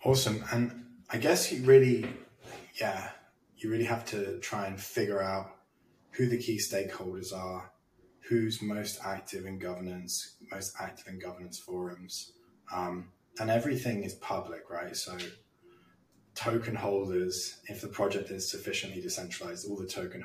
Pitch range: 90-120 Hz